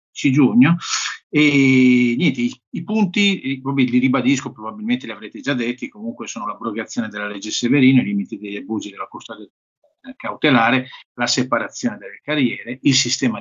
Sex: male